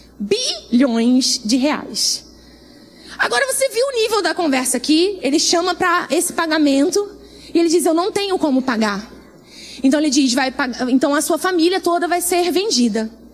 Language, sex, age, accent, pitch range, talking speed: Portuguese, female, 20-39, Brazilian, 250-335 Hz, 165 wpm